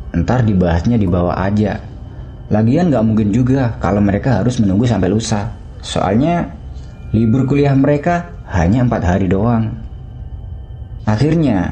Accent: native